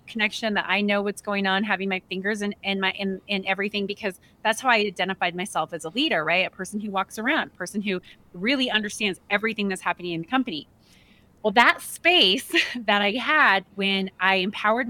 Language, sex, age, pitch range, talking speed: English, female, 30-49, 185-220 Hz, 205 wpm